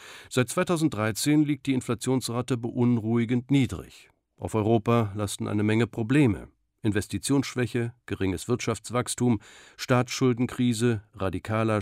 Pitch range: 105-130 Hz